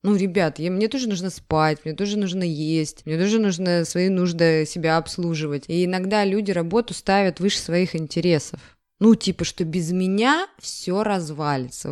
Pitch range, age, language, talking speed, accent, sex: 155-195 Hz, 20-39, Russian, 160 wpm, native, female